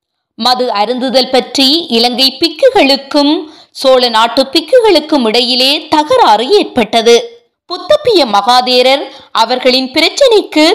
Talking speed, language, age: 85 wpm, Tamil, 20-39